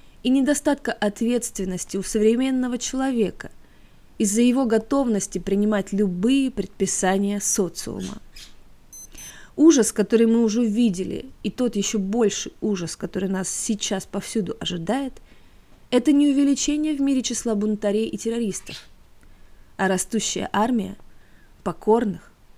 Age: 20-39